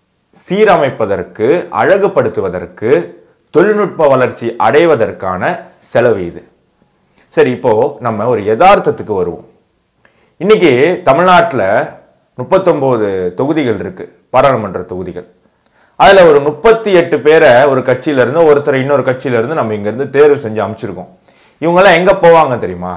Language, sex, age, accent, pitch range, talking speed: Tamil, male, 30-49, native, 110-180 Hz, 100 wpm